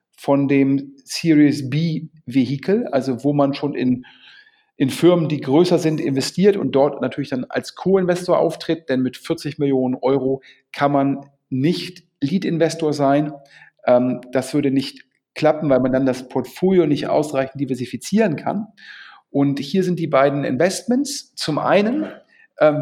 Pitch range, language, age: 135-175 Hz, German, 40-59